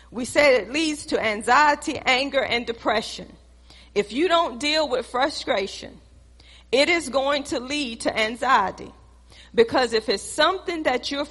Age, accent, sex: 40-59, American, female